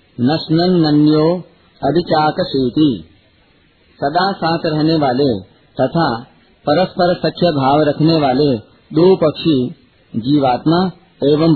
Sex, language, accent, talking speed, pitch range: male, Hindi, native, 80 wpm, 135-170 Hz